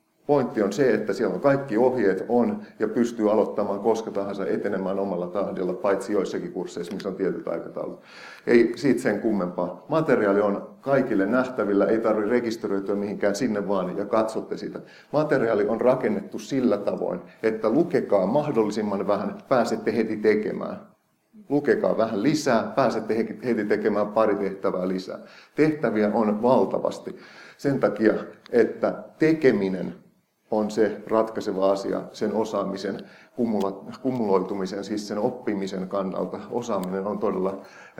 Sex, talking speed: male, 130 wpm